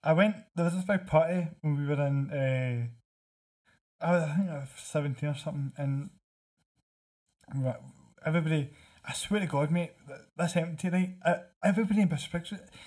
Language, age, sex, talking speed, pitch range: English, 20-39, male, 175 wpm, 140-175 Hz